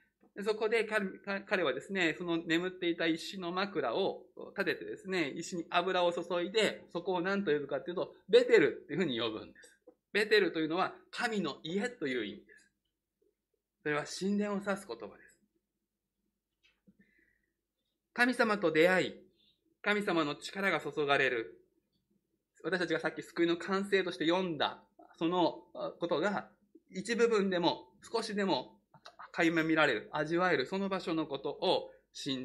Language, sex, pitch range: Japanese, male, 170-225 Hz